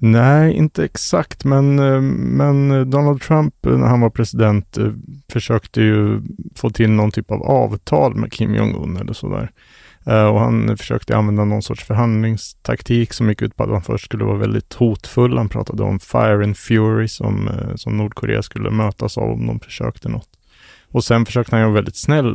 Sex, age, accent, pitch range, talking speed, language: male, 30-49, Norwegian, 105-120 Hz, 175 wpm, Swedish